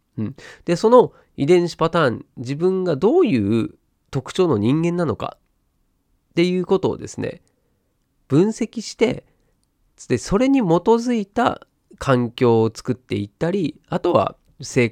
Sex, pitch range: male, 115-185 Hz